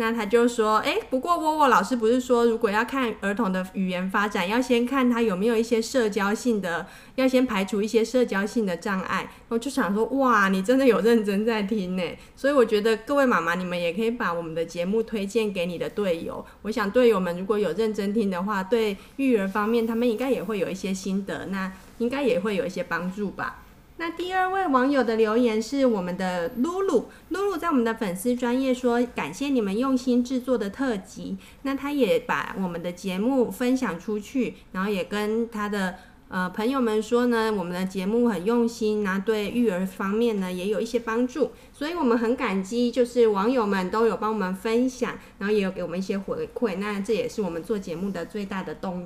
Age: 30-49